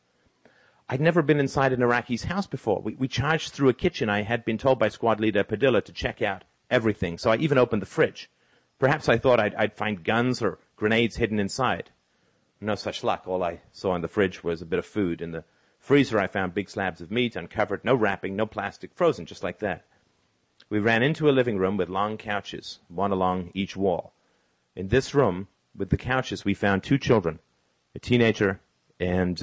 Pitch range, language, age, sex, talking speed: 95-120 Hz, English, 40-59, male, 205 wpm